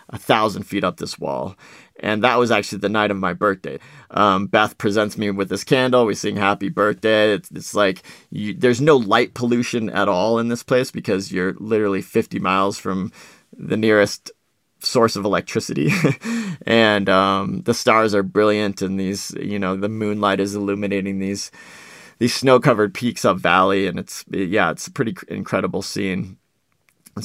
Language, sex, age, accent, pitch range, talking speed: English, male, 30-49, American, 100-120 Hz, 175 wpm